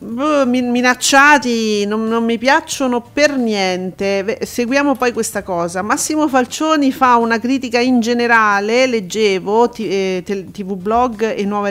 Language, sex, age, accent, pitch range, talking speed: Italian, female, 40-59, native, 185-245 Hz, 125 wpm